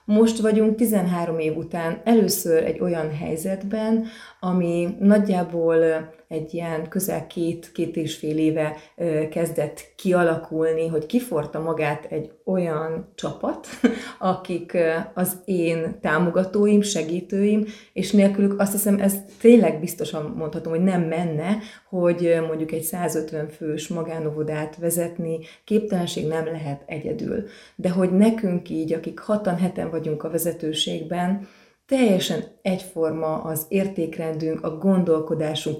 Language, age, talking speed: Hungarian, 30-49, 115 wpm